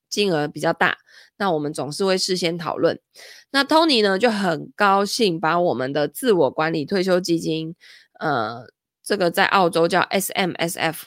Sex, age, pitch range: female, 20-39, 165-215 Hz